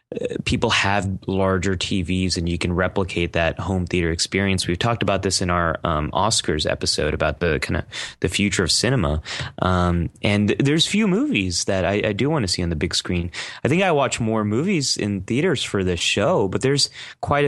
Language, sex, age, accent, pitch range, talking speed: English, male, 30-49, American, 90-115 Hz, 205 wpm